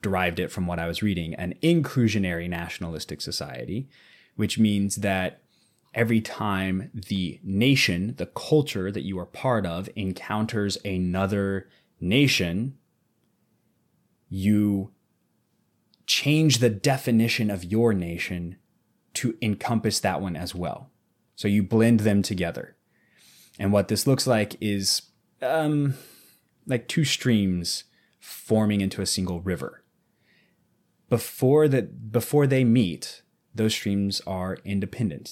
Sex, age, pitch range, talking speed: male, 20-39, 90-115 Hz, 120 wpm